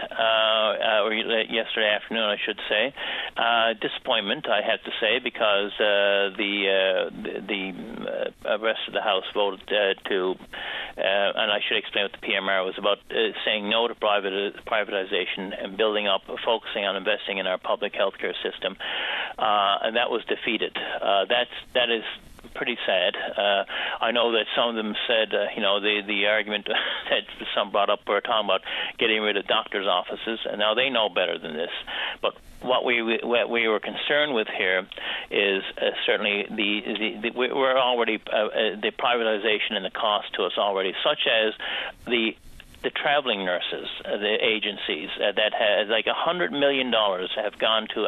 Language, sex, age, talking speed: English, male, 50-69, 185 wpm